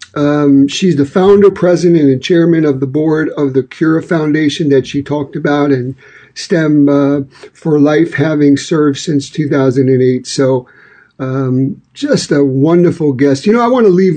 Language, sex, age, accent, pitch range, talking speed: English, male, 50-69, American, 140-175 Hz, 165 wpm